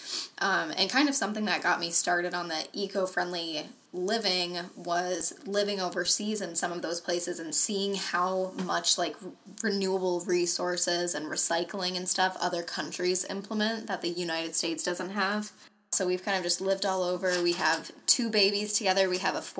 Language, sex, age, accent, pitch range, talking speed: English, female, 10-29, American, 175-195 Hz, 175 wpm